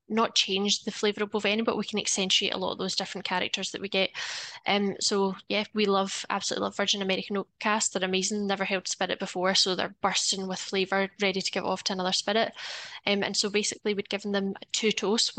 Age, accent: 10-29, British